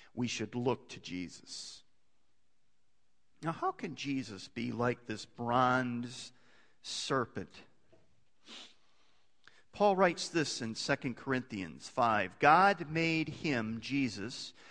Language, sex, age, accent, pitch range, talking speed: English, male, 40-59, American, 120-195 Hz, 100 wpm